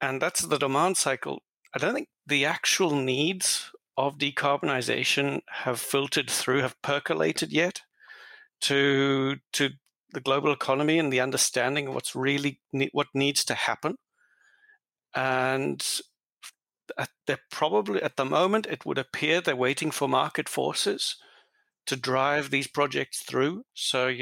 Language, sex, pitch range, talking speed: English, male, 130-150 Hz, 135 wpm